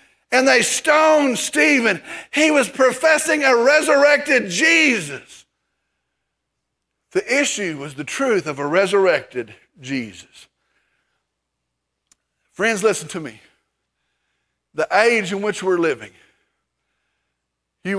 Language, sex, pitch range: English, male, 205-270 Hz